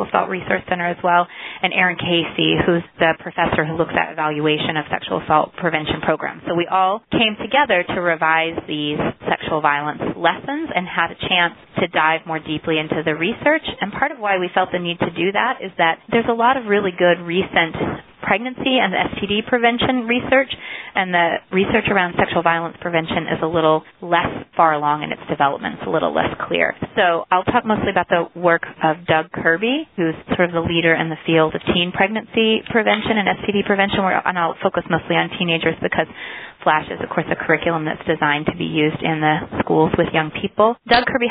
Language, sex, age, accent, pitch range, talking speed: English, female, 30-49, American, 160-200 Hz, 205 wpm